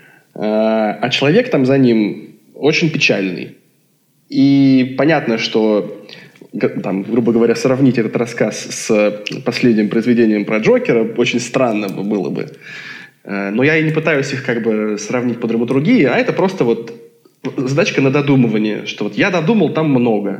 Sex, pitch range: male, 115-140 Hz